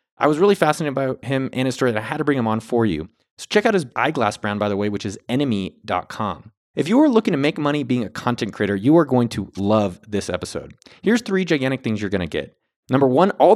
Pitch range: 110-175 Hz